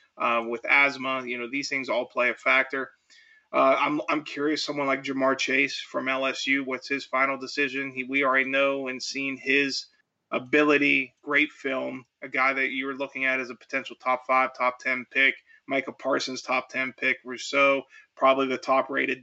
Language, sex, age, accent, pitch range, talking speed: English, male, 30-49, American, 130-140 Hz, 185 wpm